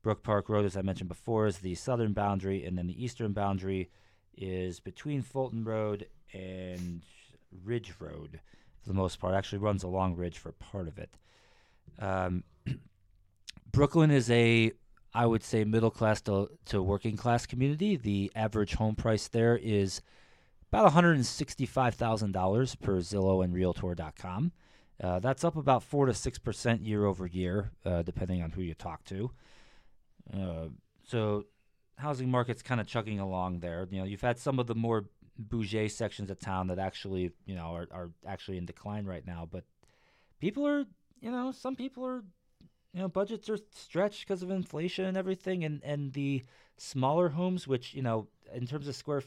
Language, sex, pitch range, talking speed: English, male, 95-130 Hz, 170 wpm